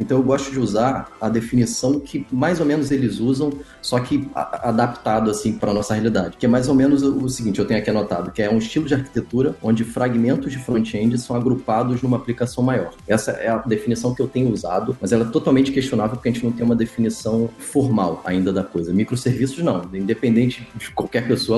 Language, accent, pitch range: Portuguese, Brazilian, 110-130 Hz